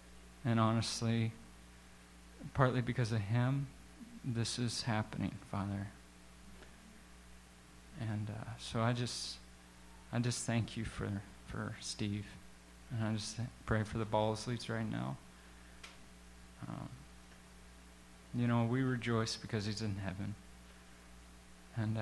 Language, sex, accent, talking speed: English, male, American, 115 wpm